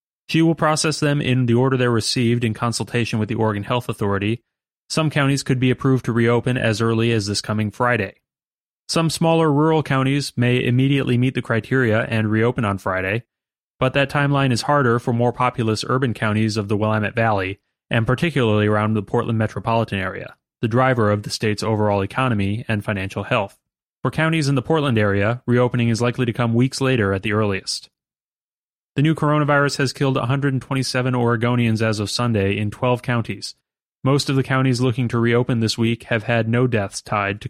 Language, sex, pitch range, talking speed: English, male, 110-135 Hz, 185 wpm